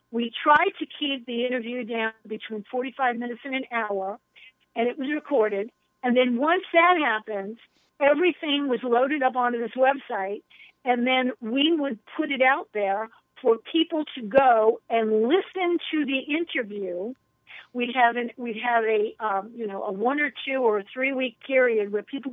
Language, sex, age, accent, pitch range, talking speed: English, female, 50-69, American, 235-285 Hz, 175 wpm